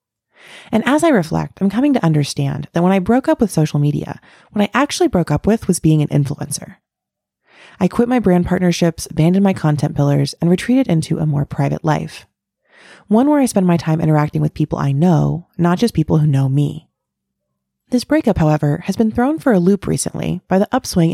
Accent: American